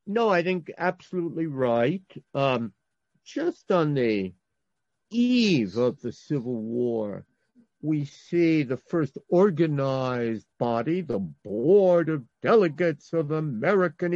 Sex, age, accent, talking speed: male, 50-69, American, 110 wpm